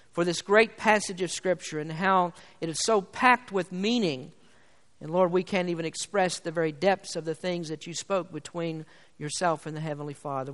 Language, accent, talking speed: English, American, 200 wpm